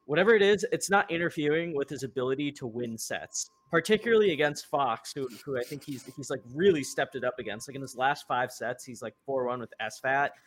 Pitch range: 120-145 Hz